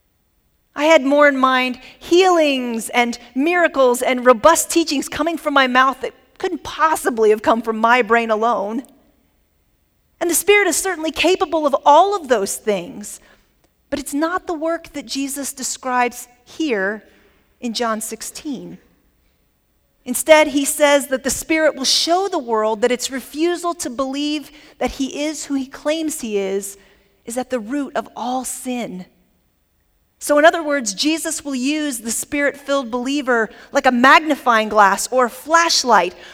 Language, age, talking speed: English, 40-59, 155 wpm